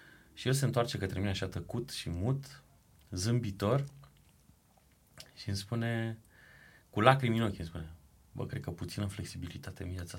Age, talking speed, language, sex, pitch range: 30-49, 160 wpm, Romanian, male, 95-135 Hz